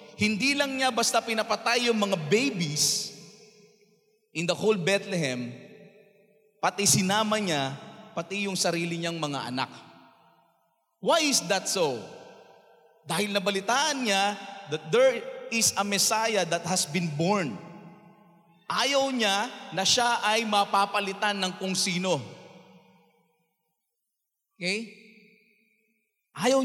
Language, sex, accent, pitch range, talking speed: Filipino, male, native, 160-220 Hz, 110 wpm